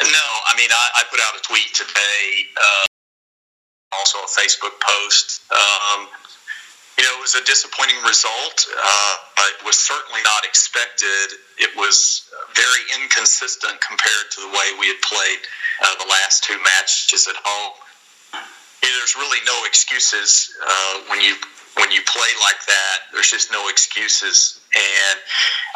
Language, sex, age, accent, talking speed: English, male, 40-59, American, 155 wpm